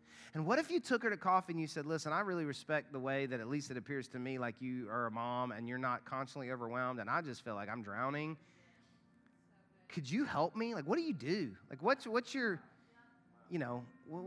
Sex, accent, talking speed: male, American, 240 wpm